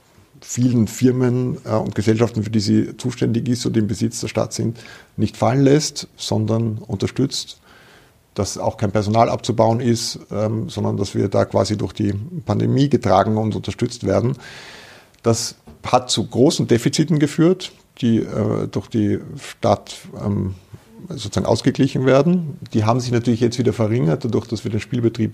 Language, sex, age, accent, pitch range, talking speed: German, male, 50-69, German, 105-125 Hz, 150 wpm